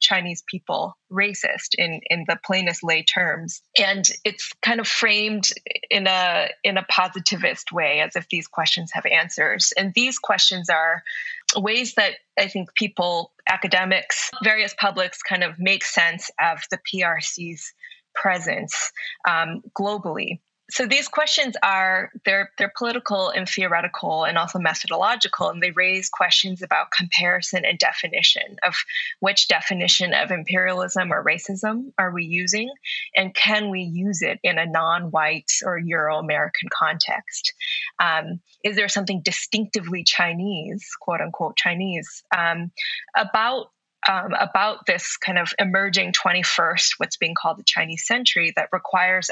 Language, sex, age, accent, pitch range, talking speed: English, female, 20-39, American, 175-210 Hz, 135 wpm